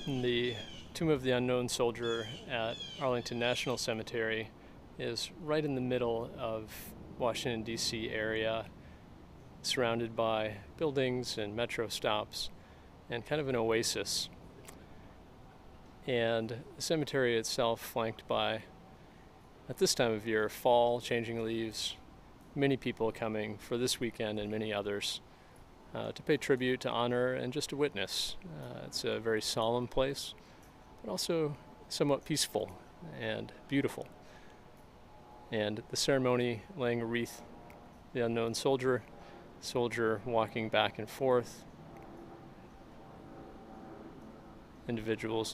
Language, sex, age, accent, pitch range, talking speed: English, male, 40-59, American, 110-125 Hz, 120 wpm